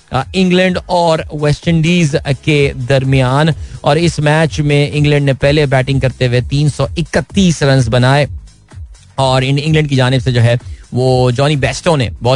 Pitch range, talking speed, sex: 120-145 Hz, 150 wpm, male